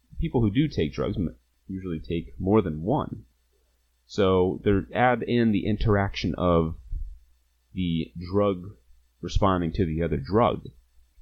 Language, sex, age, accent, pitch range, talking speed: English, male, 30-49, American, 70-95 Hz, 130 wpm